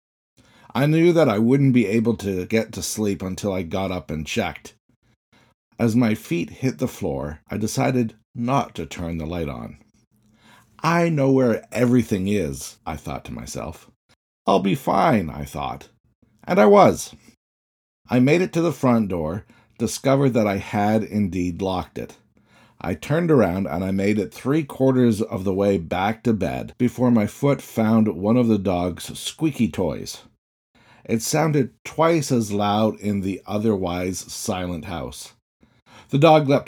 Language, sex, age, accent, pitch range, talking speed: English, male, 50-69, American, 95-125 Hz, 165 wpm